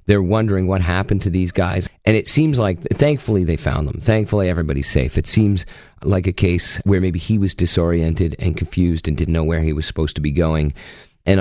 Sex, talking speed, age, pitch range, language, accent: male, 215 wpm, 40-59, 90-120 Hz, English, American